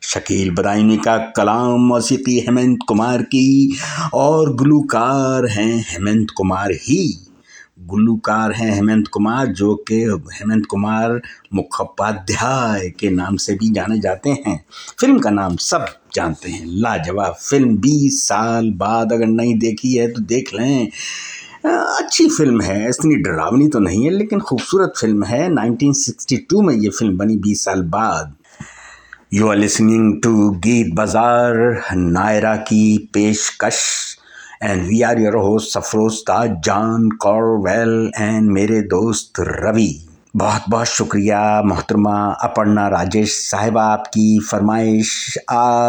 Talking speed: 130 wpm